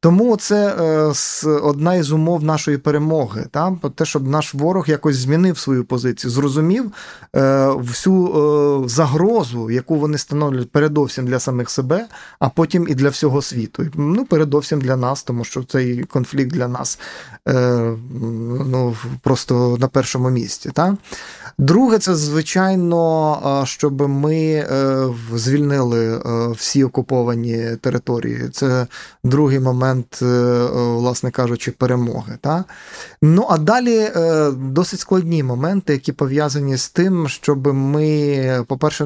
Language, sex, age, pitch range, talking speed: Ukrainian, male, 20-39, 130-155 Hz, 120 wpm